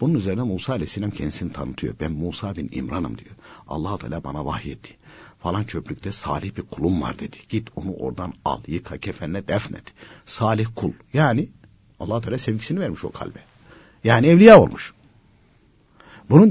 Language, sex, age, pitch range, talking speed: Turkish, male, 60-79, 90-140 Hz, 155 wpm